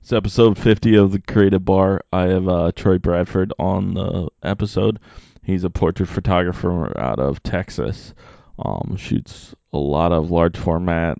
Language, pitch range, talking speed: English, 85-100 Hz, 155 wpm